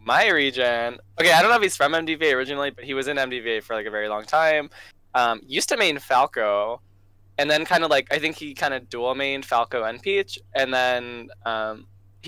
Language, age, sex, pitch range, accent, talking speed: English, 10-29, male, 100-135 Hz, American, 220 wpm